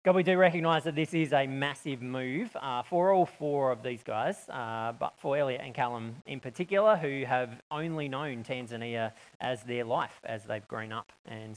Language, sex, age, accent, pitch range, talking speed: English, male, 20-39, Australian, 125-150 Hz, 195 wpm